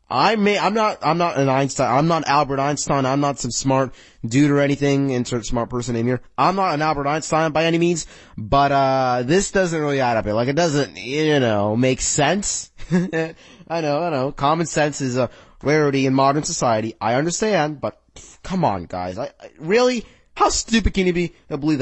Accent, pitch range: American, 130-175 Hz